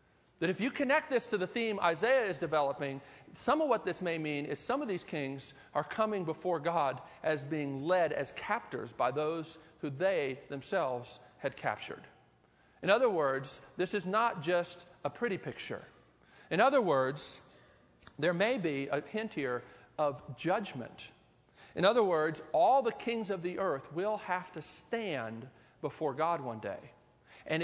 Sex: male